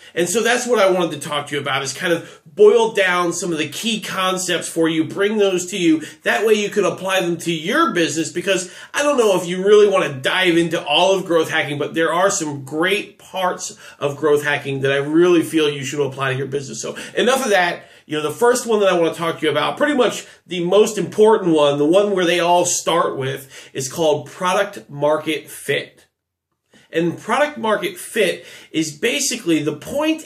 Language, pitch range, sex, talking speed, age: English, 155-210 Hz, male, 225 wpm, 30-49